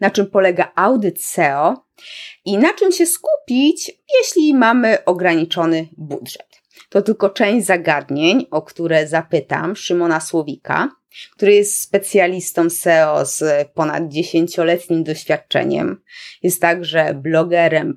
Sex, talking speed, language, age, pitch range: female, 115 wpm, Polish, 20-39, 160-200 Hz